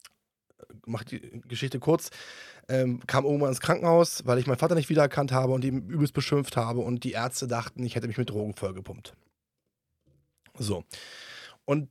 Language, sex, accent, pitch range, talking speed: German, male, German, 120-165 Hz, 165 wpm